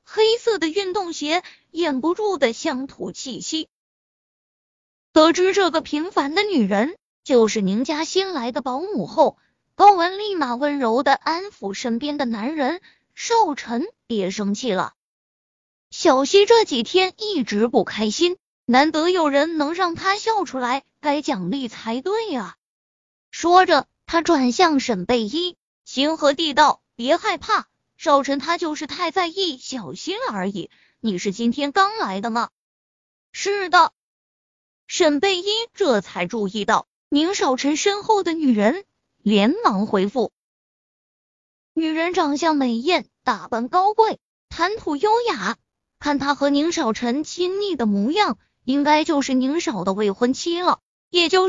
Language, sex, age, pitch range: Chinese, female, 20-39, 250-365 Hz